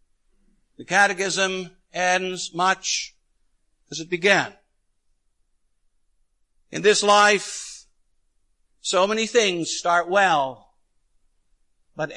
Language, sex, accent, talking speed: English, male, American, 80 wpm